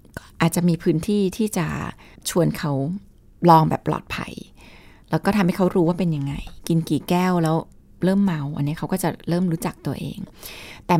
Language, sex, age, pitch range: Thai, female, 20-39, 160-205 Hz